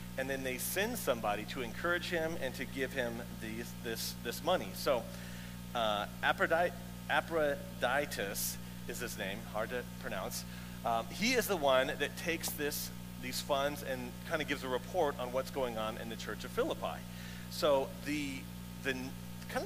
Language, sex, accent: English, male, American